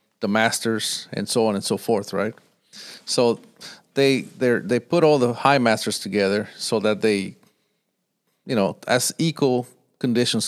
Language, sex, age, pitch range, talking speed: English, male, 40-59, 110-145 Hz, 155 wpm